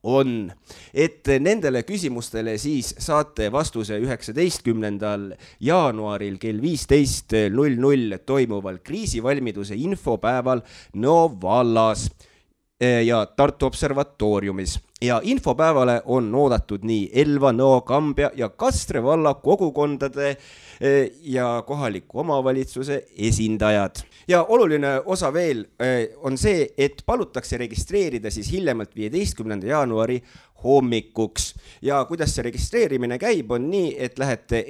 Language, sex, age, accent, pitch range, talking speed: English, male, 30-49, Finnish, 105-140 Hz, 100 wpm